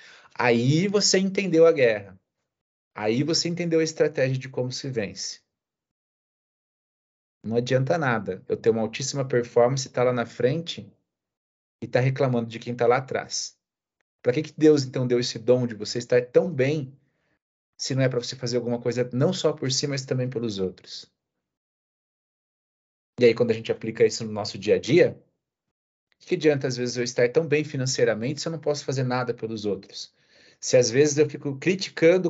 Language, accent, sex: Portuguese, Brazilian, male